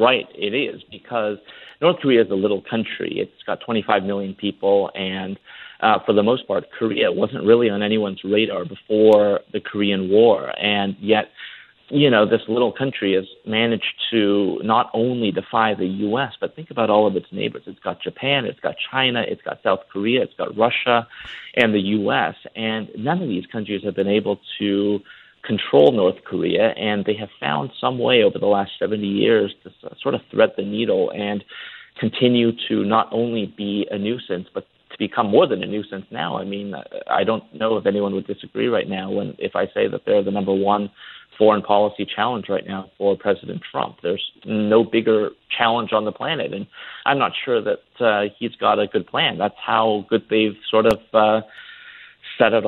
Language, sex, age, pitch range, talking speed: English, male, 40-59, 100-115 Hz, 190 wpm